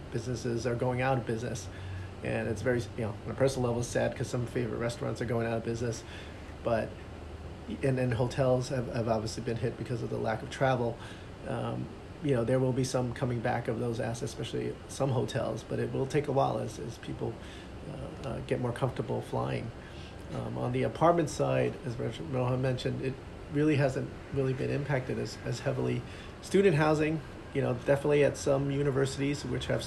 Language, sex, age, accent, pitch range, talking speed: English, male, 30-49, American, 110-135 Hz, 195 wpm